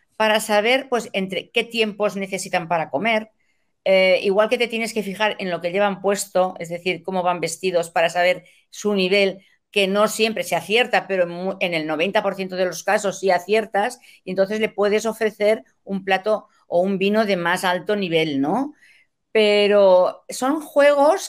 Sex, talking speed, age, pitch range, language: female, 175 wpm, 50-69, 185-225 Hz, Spanish